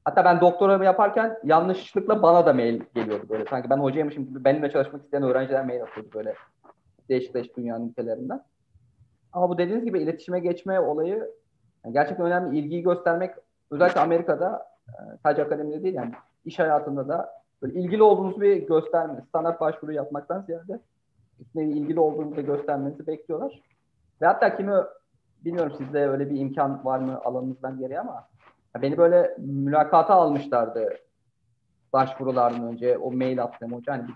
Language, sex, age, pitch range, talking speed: Turkish, male, 30-49, 125-170 Hz, 145 wpm